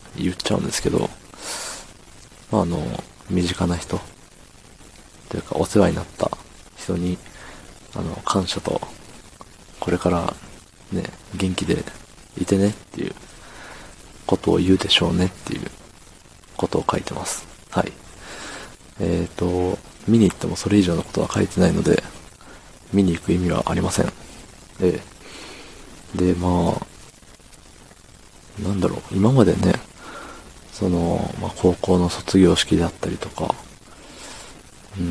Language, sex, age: Japanese, male, 40-59